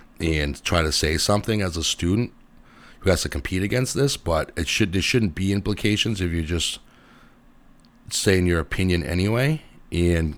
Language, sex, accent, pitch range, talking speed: English, male, American, 85-100 Hz, 175 wpm